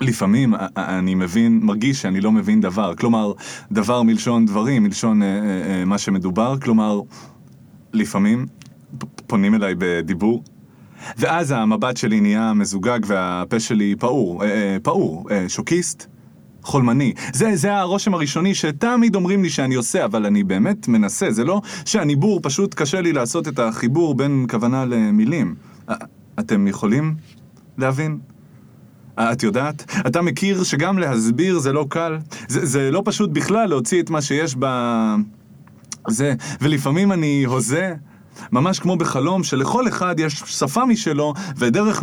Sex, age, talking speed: male, 30-49, 135 wpm